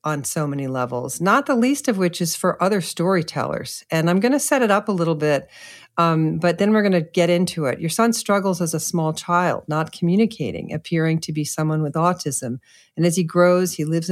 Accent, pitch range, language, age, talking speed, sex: American, 160-205 Hz, English, 50-69, 225 wpm, female